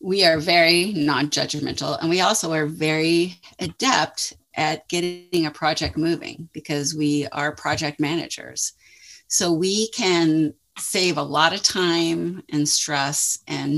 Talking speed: 135 wpm